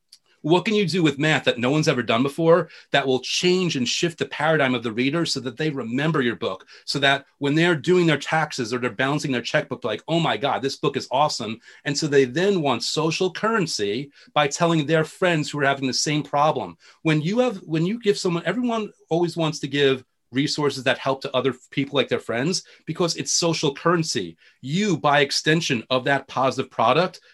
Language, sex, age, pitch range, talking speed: English, male, 40-59, 130-170 Hz, 215 wpm